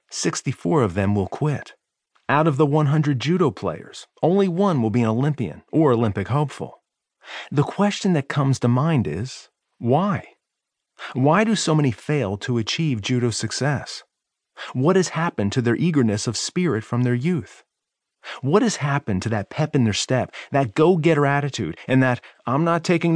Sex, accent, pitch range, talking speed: male, American, 115-155 Hz, 170 wpm